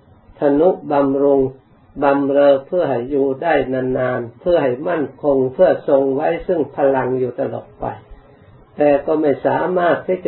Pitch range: 135-155 Hz